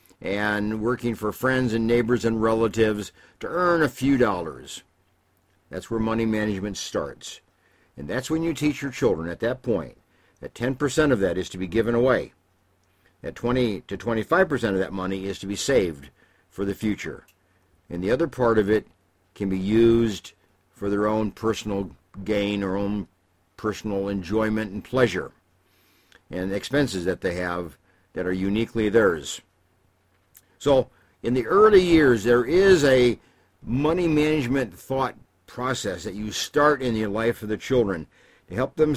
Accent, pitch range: American, 95-125 Hz